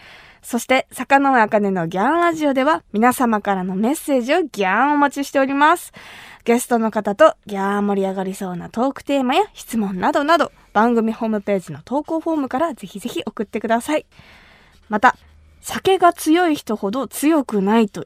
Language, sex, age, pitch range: Japanese, female, 20-39, 205-300 Hz